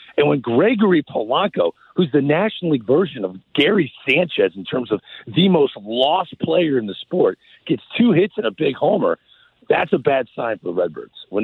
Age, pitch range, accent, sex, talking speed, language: 50-69, 115-175 Hz, American, male, 195 wpm, English